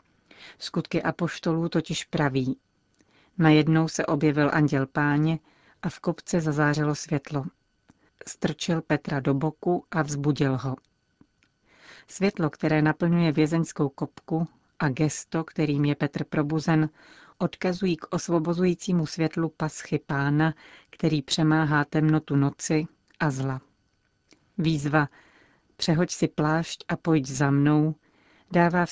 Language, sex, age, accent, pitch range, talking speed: Czech, female, 40-59, native, 145-165 Hz, 110 wpm